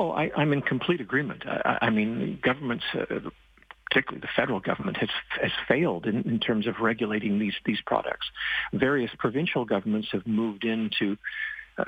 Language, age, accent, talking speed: English, 50-69, American, 170 wpm